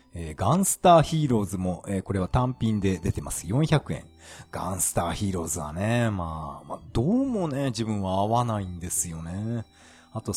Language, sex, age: Japanese, male, 40-59